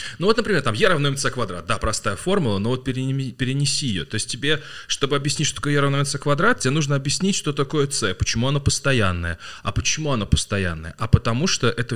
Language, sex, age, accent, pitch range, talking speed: Russian, male, 20-39, native, 105-140 Hz, 215 wpm